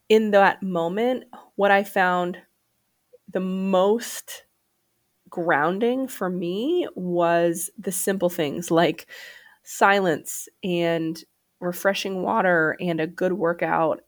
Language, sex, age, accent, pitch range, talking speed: English, female, 20-39, American, 170-215 Hz, 100 wpm